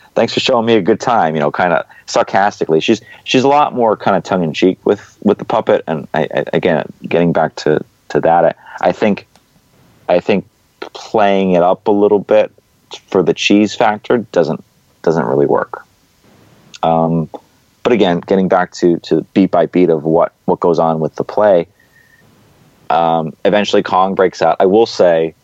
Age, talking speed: 30-49, 185 wpm